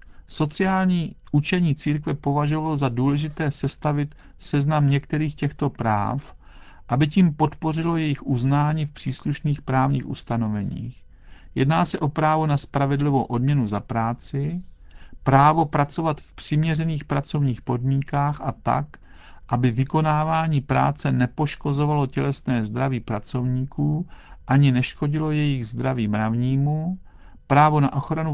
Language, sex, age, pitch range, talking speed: Czech, male, 50-69, 125-150 Hz, 110 wpm